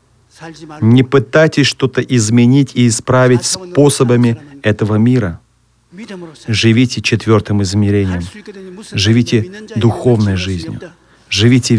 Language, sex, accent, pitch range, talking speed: Russian, male, native, 110-140 Hz, 80 wpm